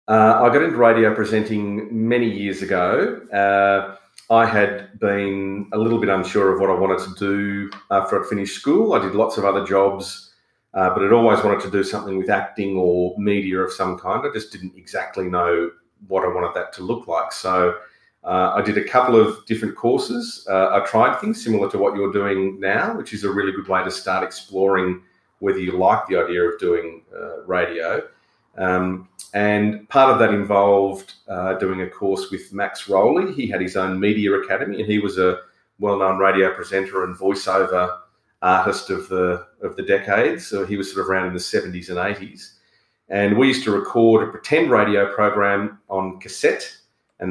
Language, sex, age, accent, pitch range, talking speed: English, male, 40-59, Australian, 95-105 Hz, 195 wpm